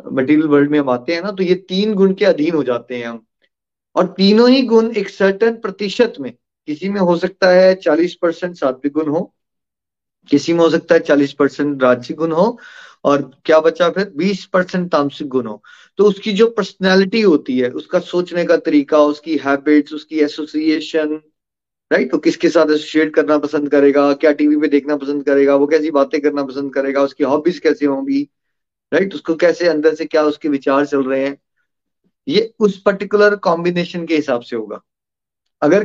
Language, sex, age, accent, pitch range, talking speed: Hindi, male, 30-49, native, 150-195 Hz, 135 wpm